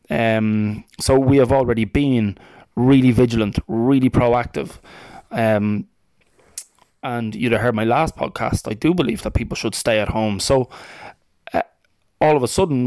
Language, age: English, 20-39